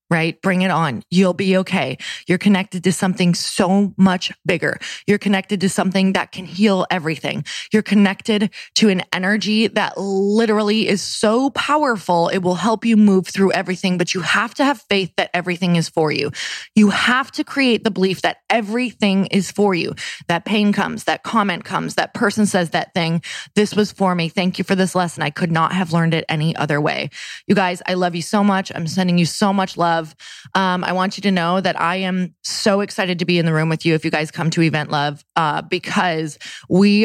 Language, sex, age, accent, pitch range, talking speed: English, female, 20-39, American, 170-205 Hz, 210 wpm